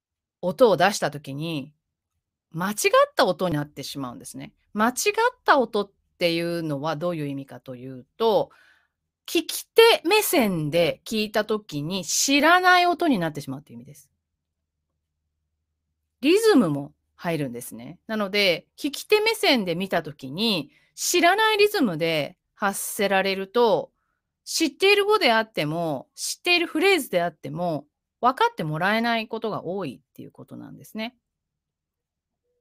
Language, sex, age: Japanese, female, 30-49